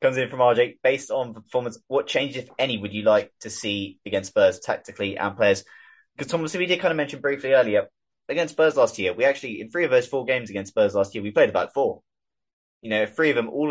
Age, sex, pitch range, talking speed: 20-39, male, 100-155 Hz, 250 wpm